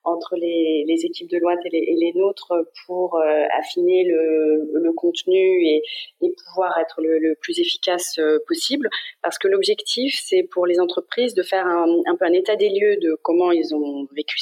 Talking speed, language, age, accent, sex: 195 wpm, French, 30-49, French, female